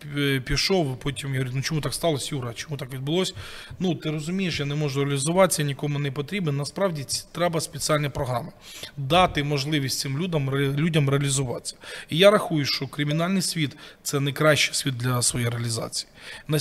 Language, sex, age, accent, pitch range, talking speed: Ukrainian, male, 20-39, native, 140-170 Hz, 165 wpm